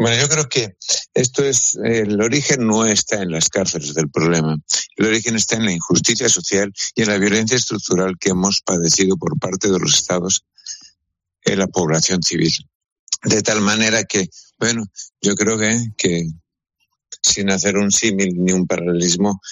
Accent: Spanish